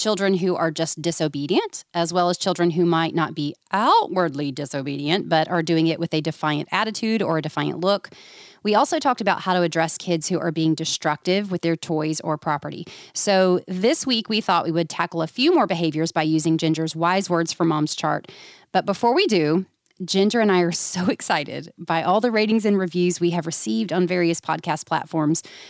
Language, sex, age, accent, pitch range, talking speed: English, female, 30-49, American, 160-200 Hz, 205 wpm